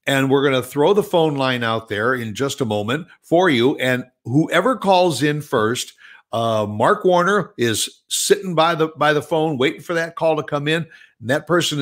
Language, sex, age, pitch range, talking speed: English, male, 60-79, 130-175 Hz, 210 wpm